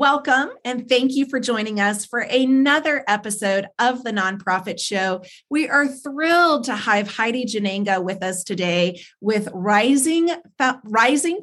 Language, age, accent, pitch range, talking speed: English, 30-49, American, 190-250 Hz, 140 wpm